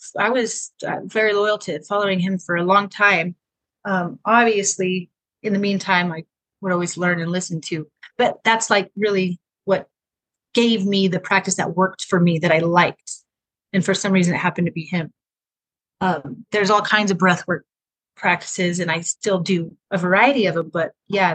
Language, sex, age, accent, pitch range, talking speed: English, female, 30-49, American, 180-225 Hz, 185 wpm